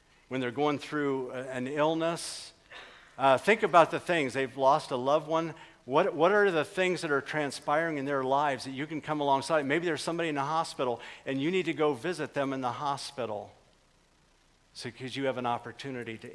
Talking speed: 200 wpm